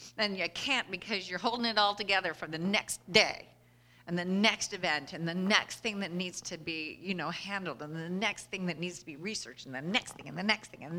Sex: female